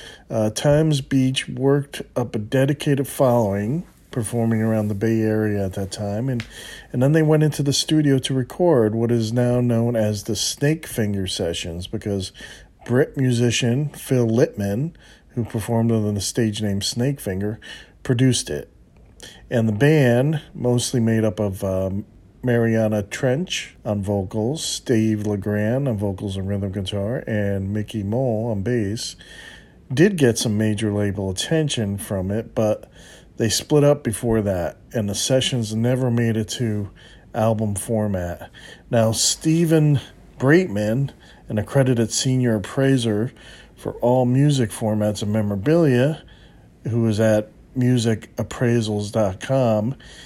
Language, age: English, 40-59